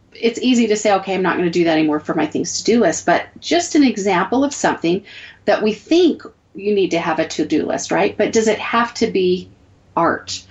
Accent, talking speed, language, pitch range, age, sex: American, 245 wpm, English, 180-235 Hz, 40-59, female